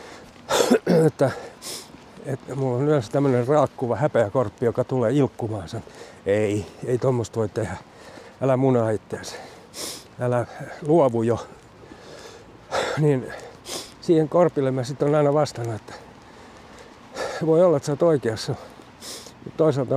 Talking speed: 115 wpm